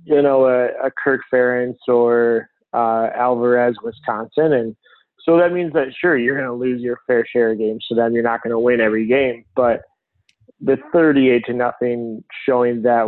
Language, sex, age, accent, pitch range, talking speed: English, male, 20-39, American, 115-130 Hz, 185 wpm